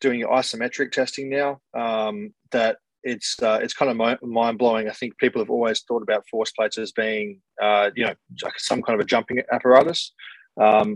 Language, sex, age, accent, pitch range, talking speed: English, male, 20-39, Australian, 100-115 Hz, 190 wpm